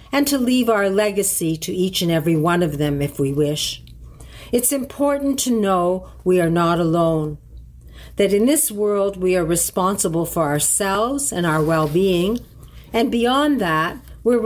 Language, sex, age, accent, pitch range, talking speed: English, female, 50-69, American, 160-225 Hz, 160 wpm